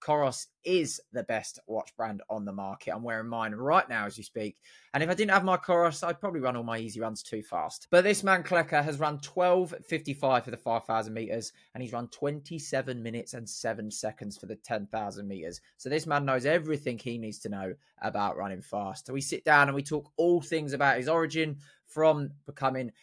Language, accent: English, British